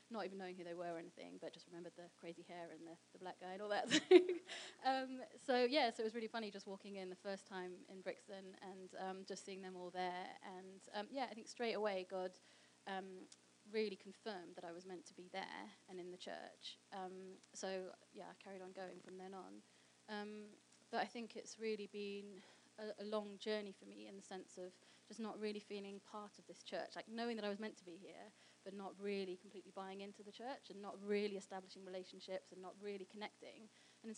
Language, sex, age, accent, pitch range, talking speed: English, female, 20-39, British, 185-215 Hz, 230 wpm